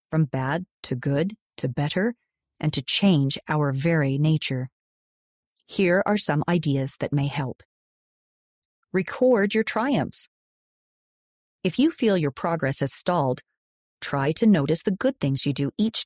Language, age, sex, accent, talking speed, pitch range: Italian, 40-59, female, American, 140 wpm, 140-200 Hz